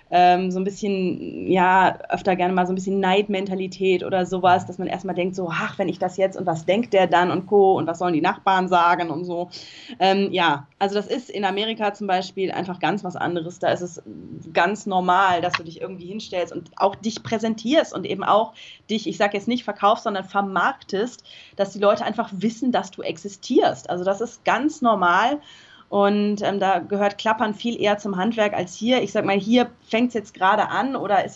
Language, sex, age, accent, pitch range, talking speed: German, female, 20-39, German, 185-220 Hz, 210 wpm